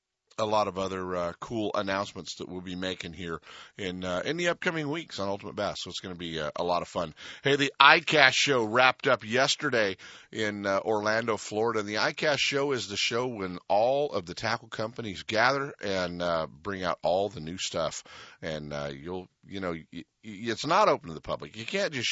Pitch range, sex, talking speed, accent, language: 90-115 Hz, male, 210 wpm, American, English